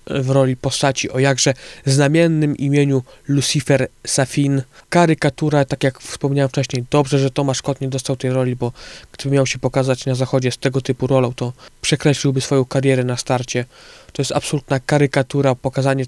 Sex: male